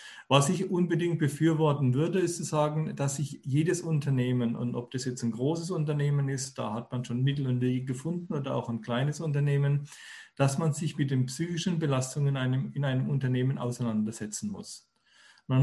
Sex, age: male, 40-59